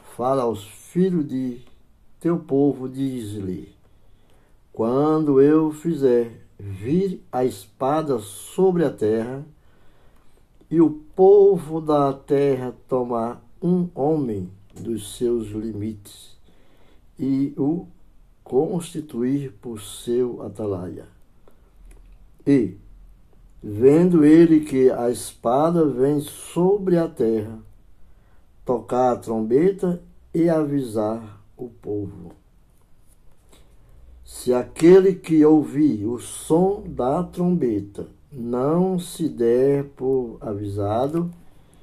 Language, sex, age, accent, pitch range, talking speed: Portuguese, male, 60-79, Brazilian, 105-155 Hz, 90 wpm